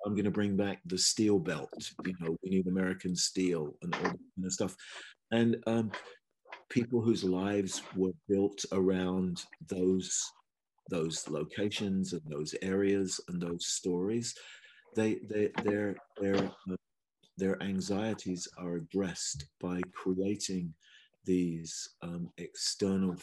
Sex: male